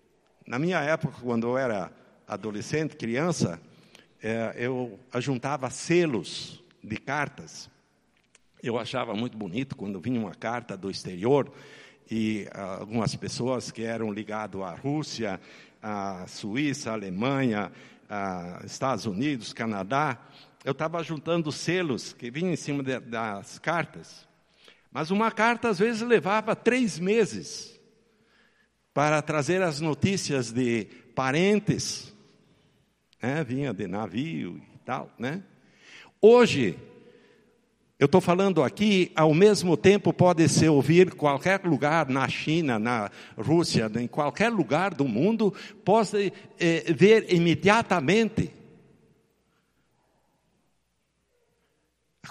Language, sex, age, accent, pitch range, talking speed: Portuguese, male, 60-79, Brazilian, 125-185 Hz, 110 wpm